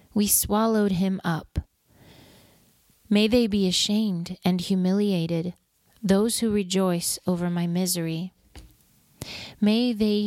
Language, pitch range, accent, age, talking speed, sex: English, 170-200 Hz, American, 30-49, 105 wpm, female